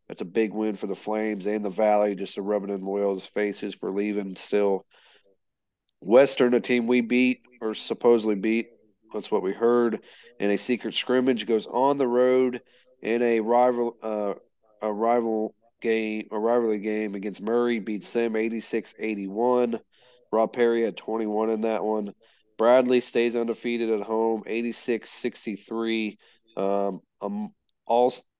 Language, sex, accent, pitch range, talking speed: English, male, American, 105-120 Hz, 150 wpm